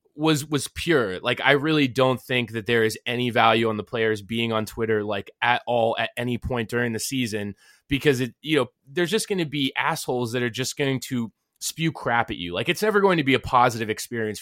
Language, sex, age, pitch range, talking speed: English, male, 20-39, 120-155 Hz, 235 wpm